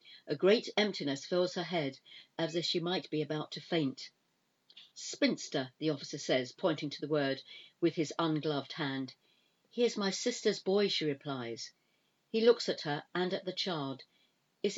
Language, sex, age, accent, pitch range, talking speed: English, female, 50-69, British, 155-195 Hz, 170 wpm